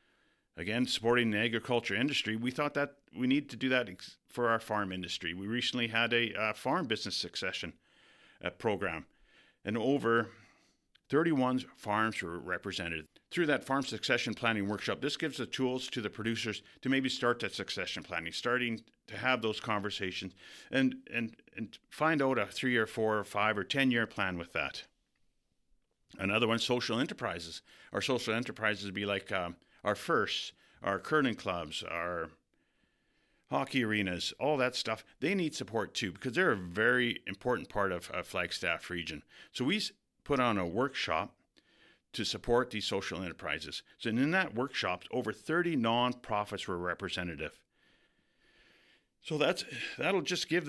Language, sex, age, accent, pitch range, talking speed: English, male, 50-69, American, 105-130 Hz, 160 wpm